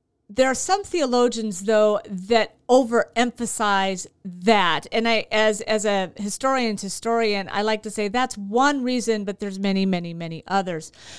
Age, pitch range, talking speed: 40-59, 185-230 Hz, 150 wpm